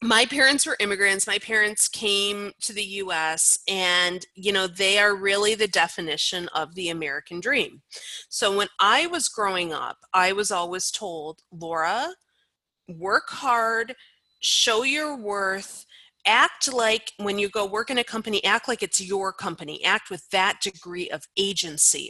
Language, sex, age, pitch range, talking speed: English, female, 30-49, 175-230 Hz, 155 wpm